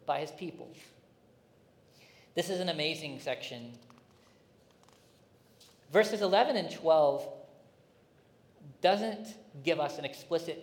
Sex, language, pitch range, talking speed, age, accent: male, English, 145-175 Hz, 95 wpm, 40-59, American